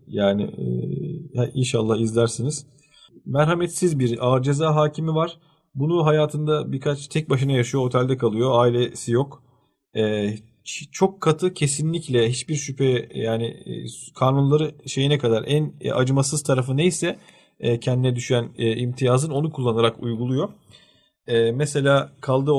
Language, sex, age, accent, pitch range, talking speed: Turkish, male, 40-59, native, 115-145 Hz, 105 wpm